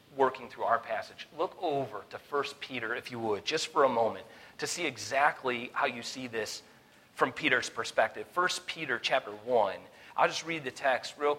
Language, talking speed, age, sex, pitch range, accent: English, 190 wpm, 40-59, male, 130-165 Hz, American